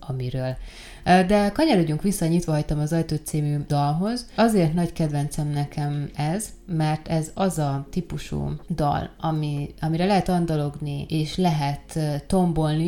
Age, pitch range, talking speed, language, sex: 20-39, 150-170 Hz, 125 wpm, Hungarian, female